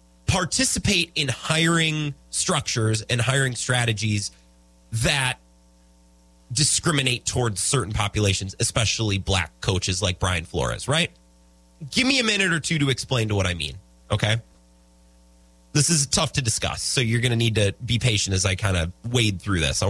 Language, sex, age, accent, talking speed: English, male, 30-49, American, 160 wpm